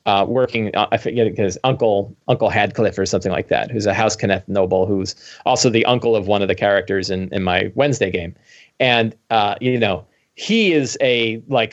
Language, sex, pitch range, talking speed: English, male, 105-135 Hz, 205 wpm